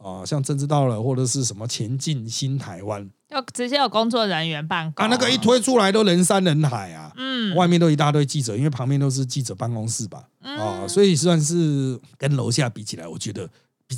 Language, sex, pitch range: Chinese, male, 125-190 Hz